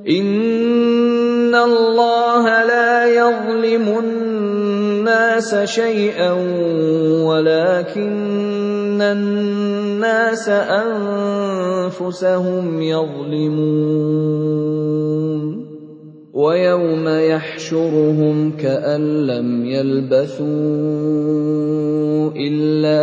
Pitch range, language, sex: 155-205 Hz, Indonesian, male